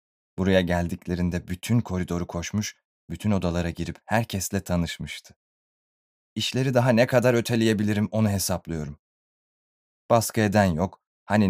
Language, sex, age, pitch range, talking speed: Turkish, male, 30-49, 90-115 Hz, 110 wpm